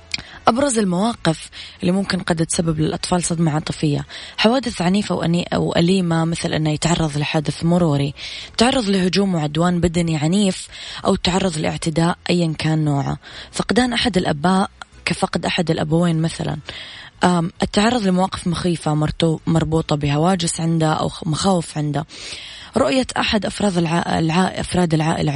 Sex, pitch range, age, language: female, 160-190 Hz, 20-39, Arabic